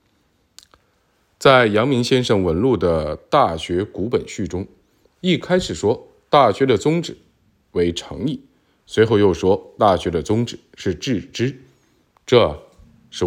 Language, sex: Chinese, male